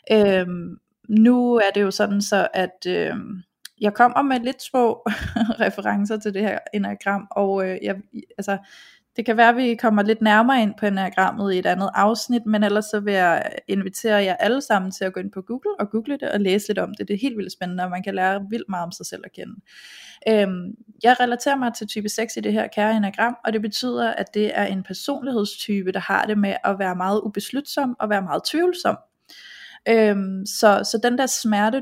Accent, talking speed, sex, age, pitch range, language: native, 205 wpm, female, 20-39, 195-235 Hz, Danish